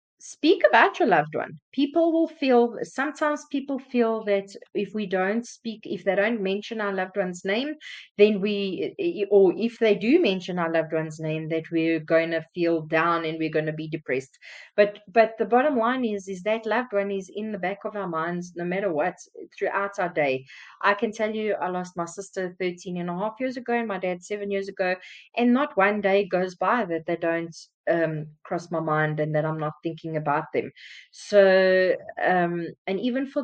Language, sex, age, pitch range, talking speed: English, female, 30-49, 170-220 Hz, 205 wpm